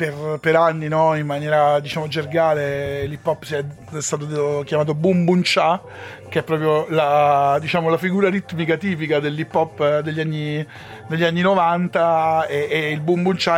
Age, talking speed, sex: 40-59, 170 wpm, male